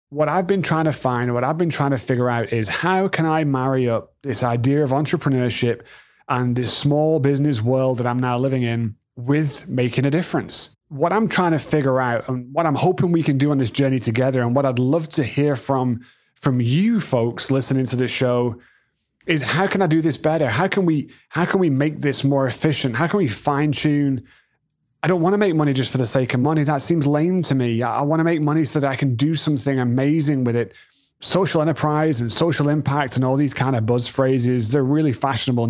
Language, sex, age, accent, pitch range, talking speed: English, male, 30-49, British, 125-155 Hz, 230 wpm